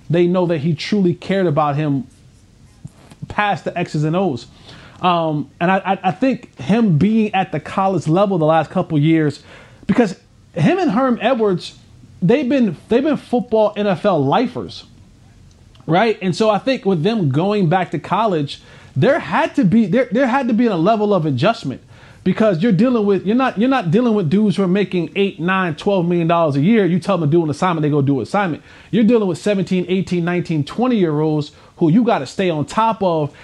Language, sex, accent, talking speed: English, male, American, 200 wpm